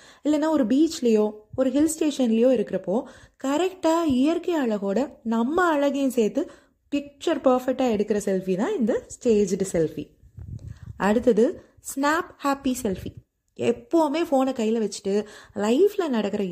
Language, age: Tamil, 20-39